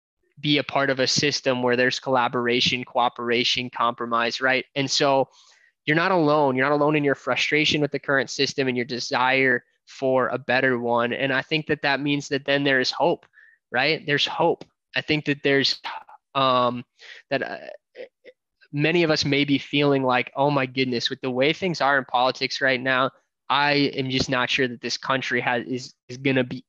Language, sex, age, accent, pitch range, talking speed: English, male, 20-39, American, 130-150 Hz, 200 wpm